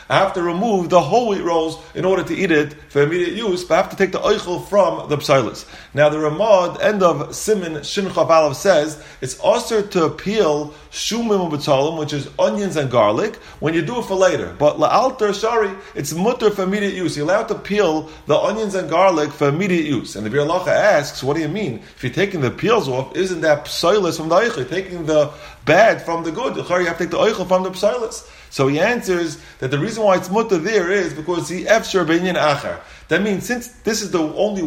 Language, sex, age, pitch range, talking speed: English, male, 30-49, 150-195 Hz, 225 wpm